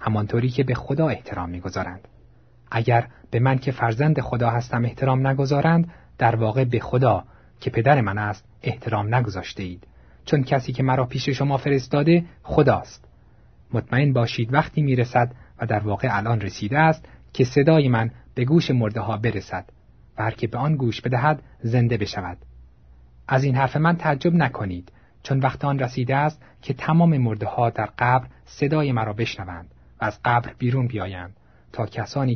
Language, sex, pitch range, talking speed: Persian, male, 105-135 Hz, 160 wpm